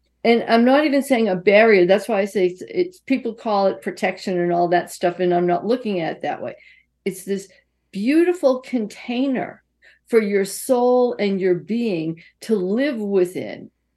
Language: English